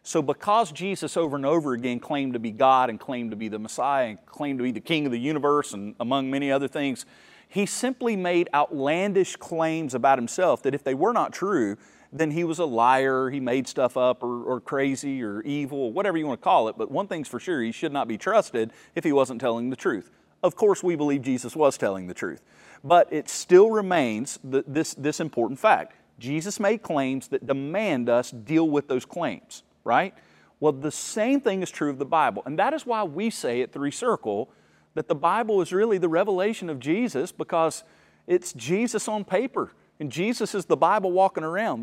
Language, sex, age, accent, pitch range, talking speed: English, male, 40-59, American, 135-185 Hz, 210 wpm